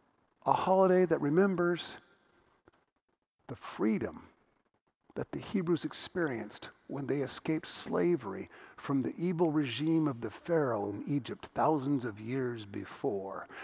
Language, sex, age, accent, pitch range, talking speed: English, male, 50-69, American, 135-175 Hz, 120 wpm